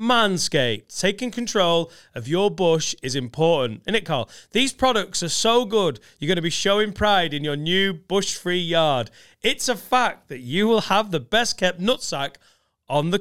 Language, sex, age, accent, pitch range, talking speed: English, male, 30-49, British, 155-205 Hz, 175 wpm